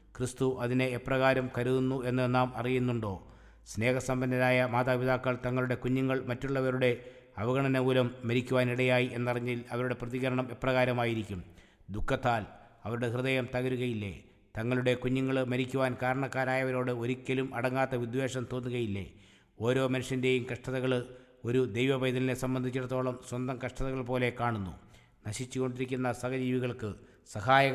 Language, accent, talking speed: English, Indian, 80 wpm